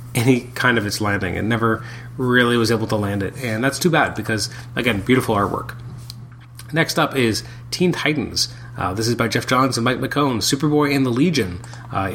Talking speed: 200 wpm